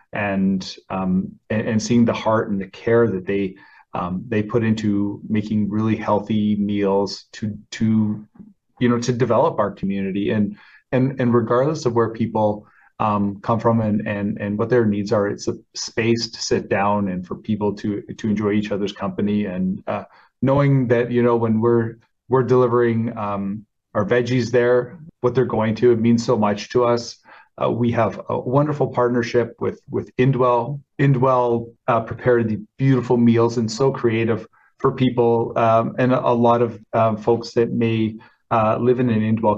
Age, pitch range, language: 30-49, 105-120 Hz, English